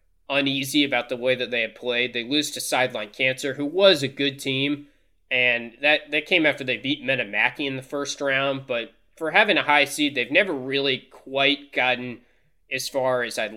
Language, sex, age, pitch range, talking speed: English, male, 20-39, 125-155 Hz, 200 wpm